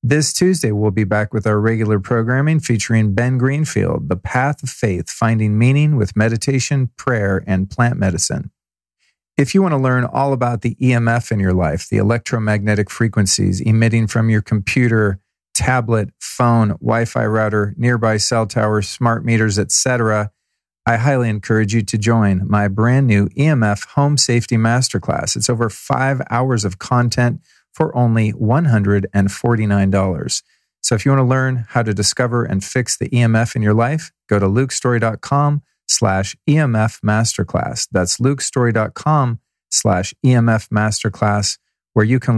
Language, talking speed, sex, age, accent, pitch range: English, 150 wpm, male, 40-59, American, 105-130 Hz